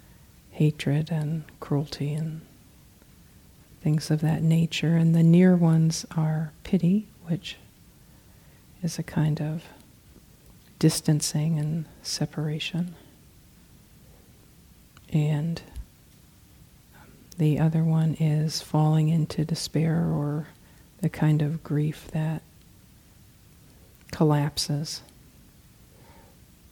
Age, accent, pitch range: 40-59, American, 150-165 Hz